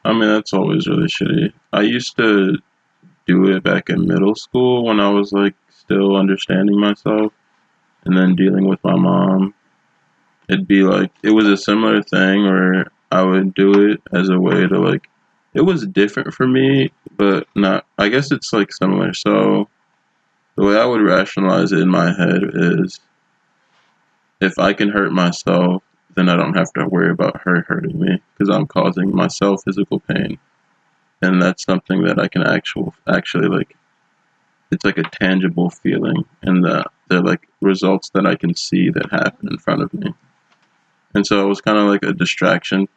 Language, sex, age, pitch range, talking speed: English, male, 20-39, 95-100 Hz, 175 wpm